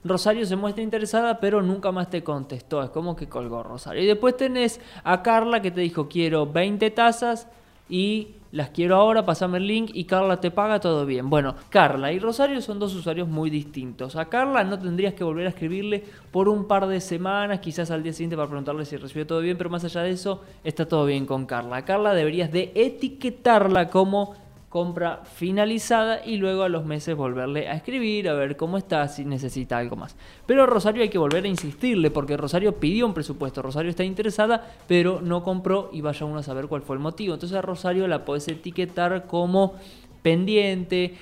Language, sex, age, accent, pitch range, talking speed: Spanish, male, 20-39, Argentinian, 150-195 Hz, 205 wpm